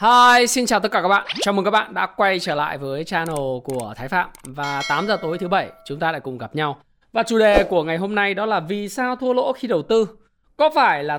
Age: 20-39